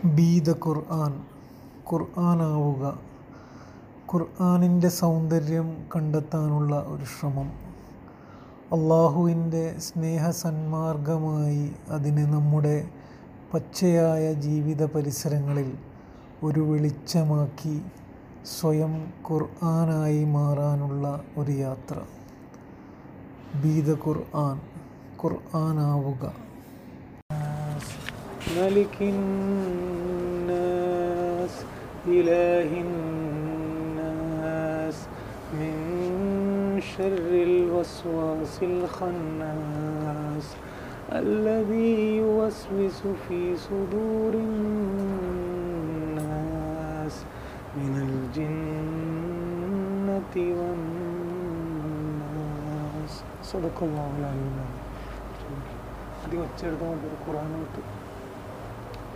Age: 30-49